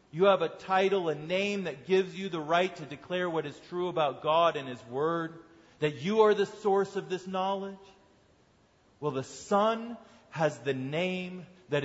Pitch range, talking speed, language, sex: 150-205 Hz, 180 wpm, English, male